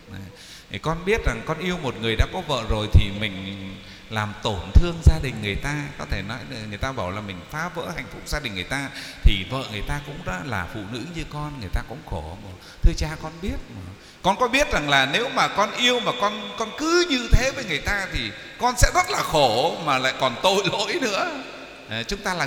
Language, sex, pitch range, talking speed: Vietnamese, male, 115-190 Hz, 235 wpm